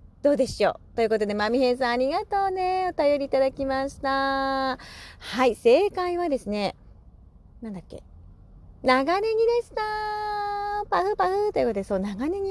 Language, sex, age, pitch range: Japanese, female, 30-49, 190-290 Hz